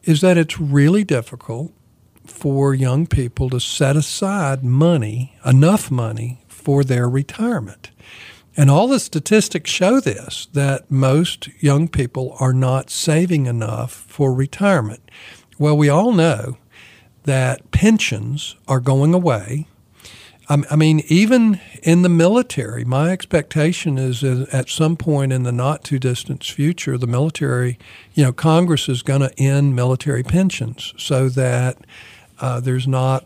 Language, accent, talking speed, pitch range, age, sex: English, American, 140 wpm, 125-150 Hz, 50-69, male